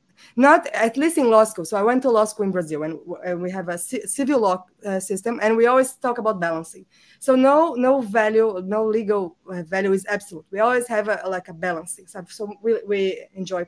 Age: 20-39